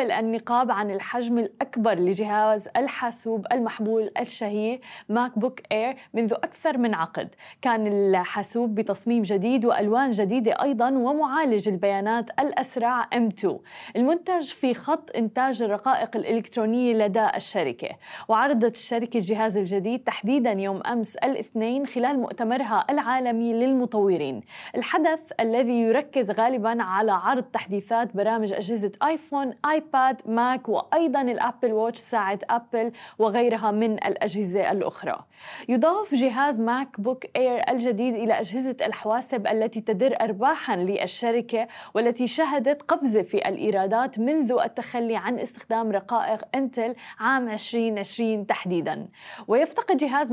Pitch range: 220-255 Hz